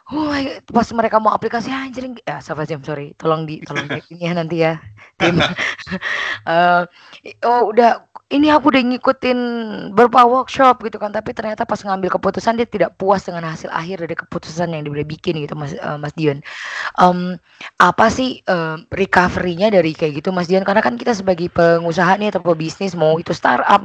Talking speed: 180 wpm